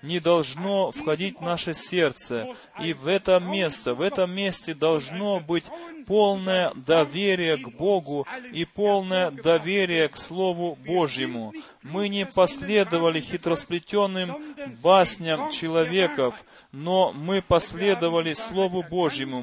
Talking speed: 110 wpm